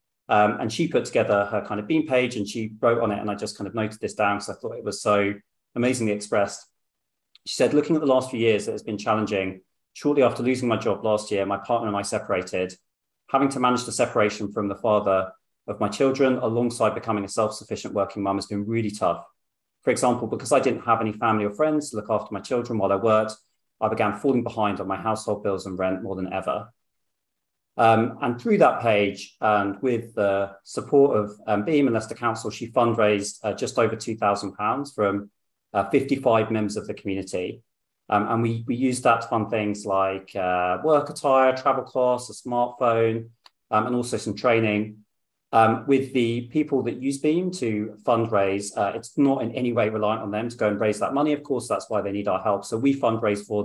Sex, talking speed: male, 215 wpm